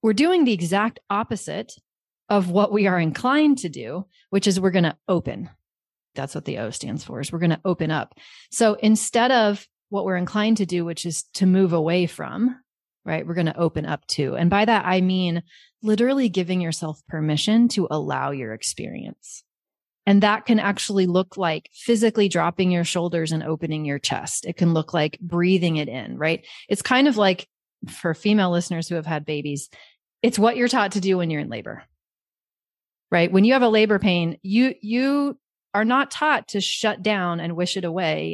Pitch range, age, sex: 170-220 Hz, 30-49, female